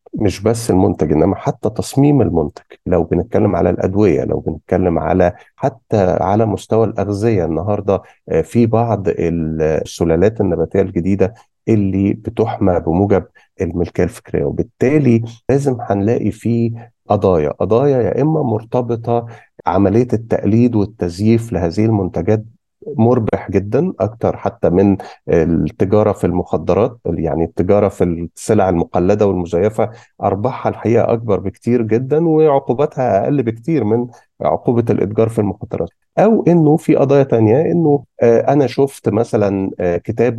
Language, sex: Arabic, male